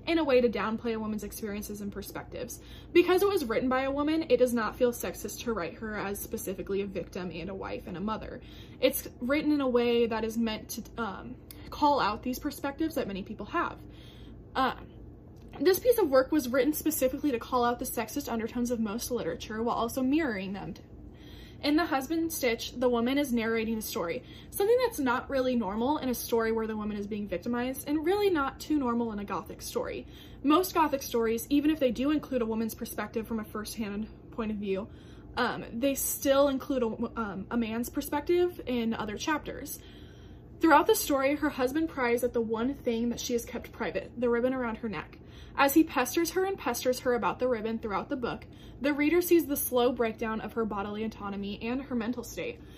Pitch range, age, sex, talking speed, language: 225-285 Hz, 20-39, female, 210 wpm, English